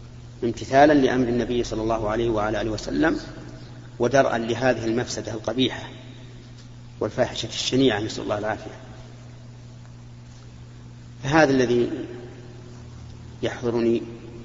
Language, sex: Arabic, male